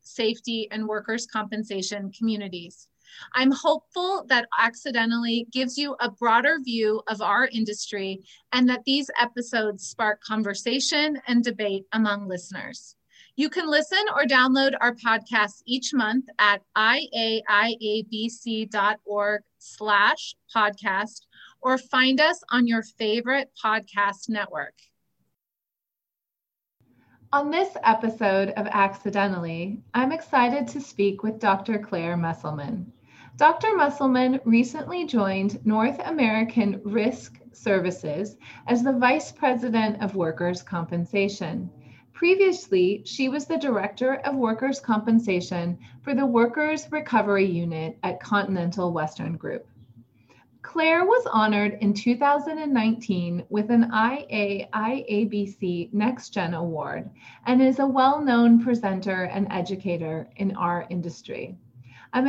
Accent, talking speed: American, 110 wpm